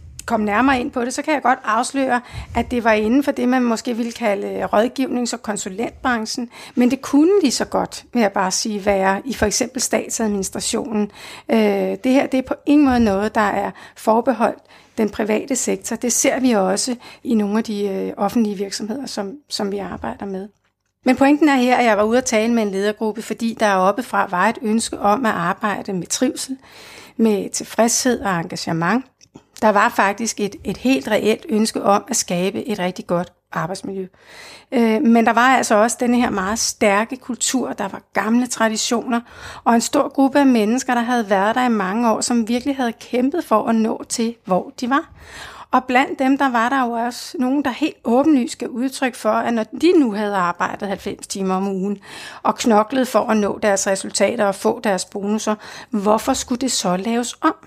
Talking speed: 200 wpm